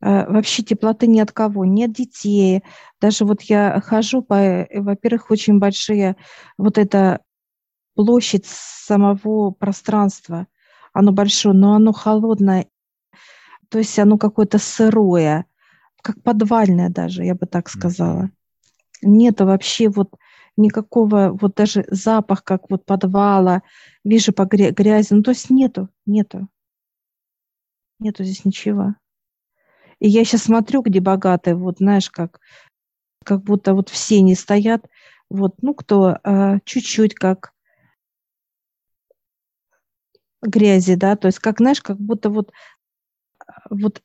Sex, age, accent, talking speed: female, 40-59, native, 120 wpm